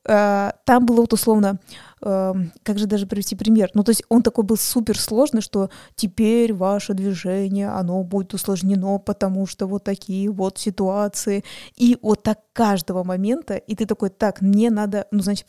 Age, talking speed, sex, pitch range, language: 20-39, 165 wpm, female, 195-230 Hz, Russian